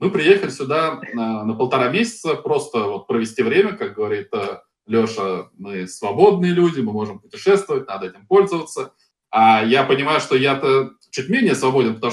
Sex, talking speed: male, 155 wpm